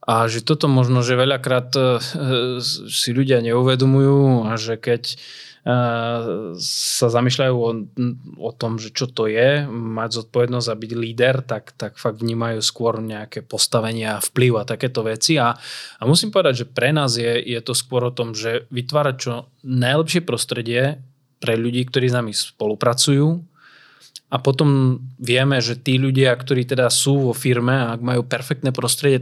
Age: 20-39